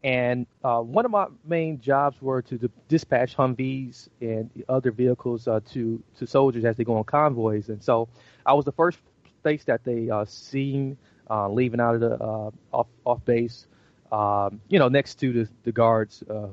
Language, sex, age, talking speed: English, male, 30-49, 190 wpm